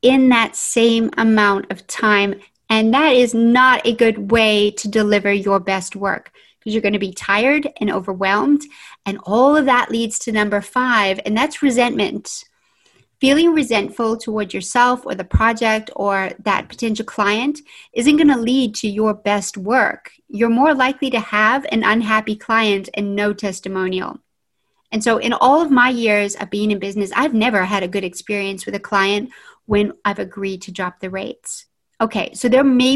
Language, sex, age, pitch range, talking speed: English, female, 40-59, 205-245 Hz, 180 wpm